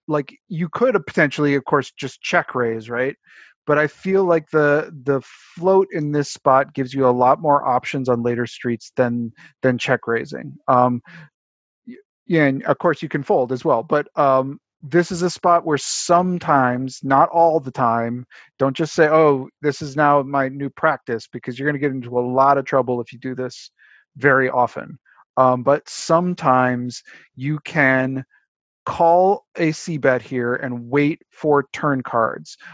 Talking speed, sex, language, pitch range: 175 wpm, male, English, 130-165 Hz